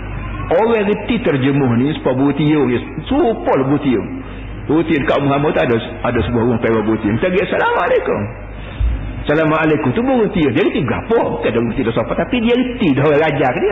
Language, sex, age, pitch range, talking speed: Malayalam, male, 50-69, 120-185 Hz, 155 wpm